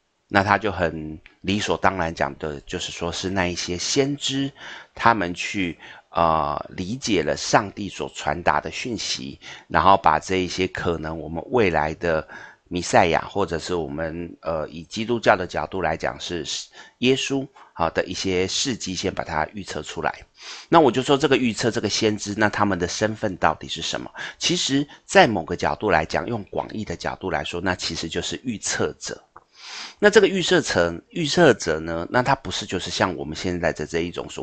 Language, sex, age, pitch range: Chinese, male, 30-49, 80-110 Hz